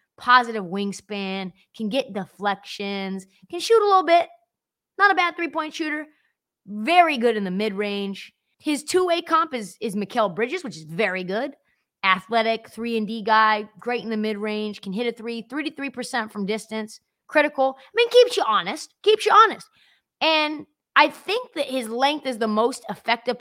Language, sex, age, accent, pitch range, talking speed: English, female, 20-39, American, 215-305 Hz, 185 wpm